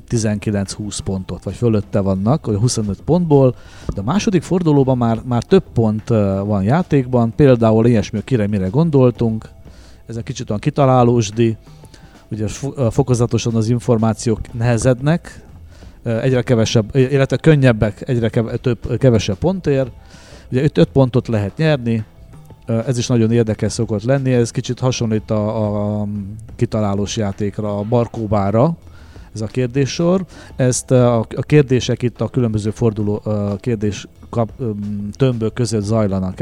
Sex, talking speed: male, 125 wpm